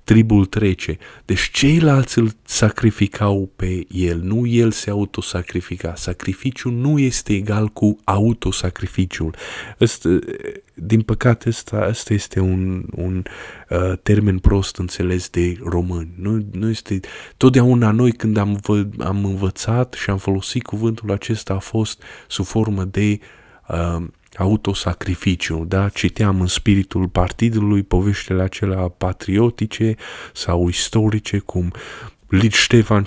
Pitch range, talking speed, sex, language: 90-110 Hz, 120 wpm, male, Romanian